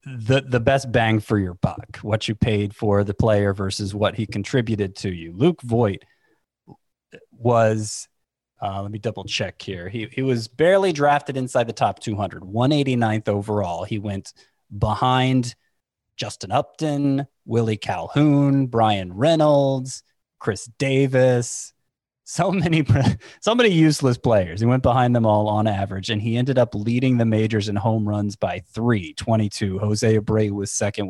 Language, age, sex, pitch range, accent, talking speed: English, 30-49, male, 100-130 Hz, American, 155 wpm